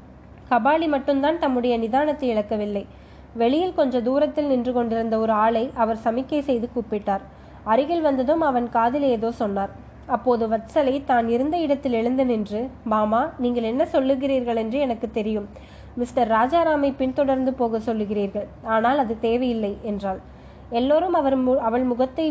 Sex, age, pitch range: female, 20-39, 225-270 Hz